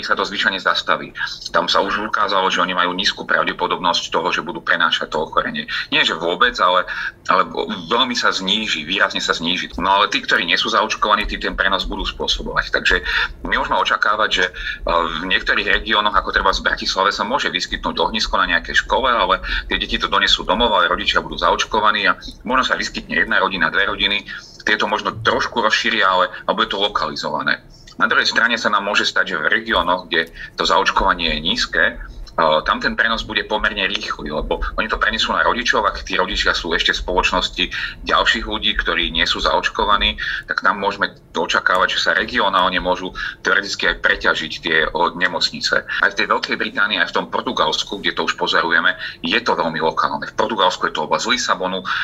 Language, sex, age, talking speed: Slovak, male, 30-49, 195 wpm